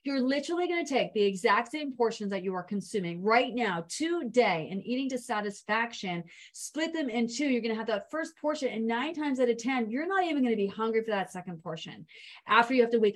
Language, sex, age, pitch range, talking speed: English, female, 30-49, 200-250 Hz, 240 wpm